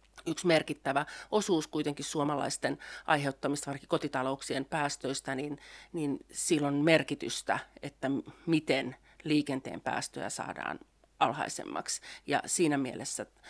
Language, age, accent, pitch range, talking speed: Finnish, 40-59, native, 135-155 Hz, 100 wpm